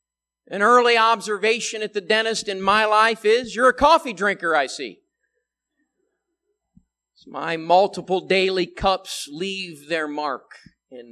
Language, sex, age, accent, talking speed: English, male, 50-69, American, 130 wpm